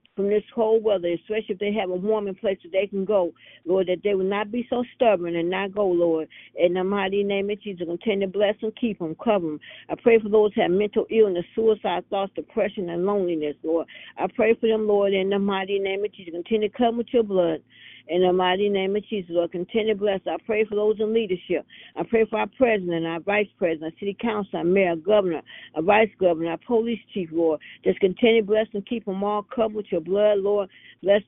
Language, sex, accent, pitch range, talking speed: English, female, American, 185-220 Hz, 235 wpm